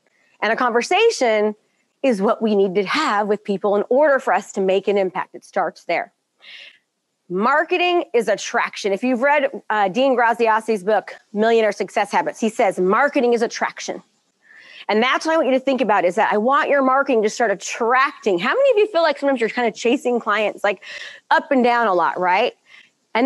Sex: female